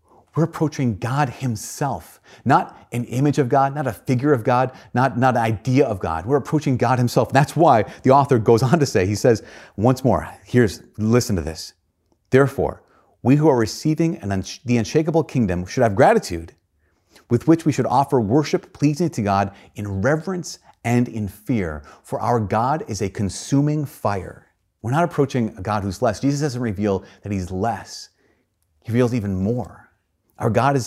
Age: 30-49